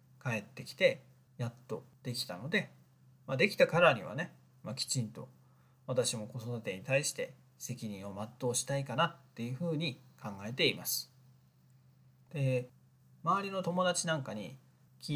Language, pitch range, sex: Japanese, 120-140 Hz, male